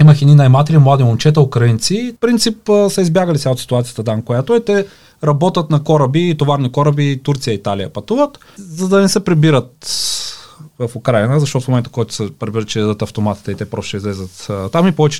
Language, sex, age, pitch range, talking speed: Bulgarian, male, 30-49, 130-190 Hz, 205 wpm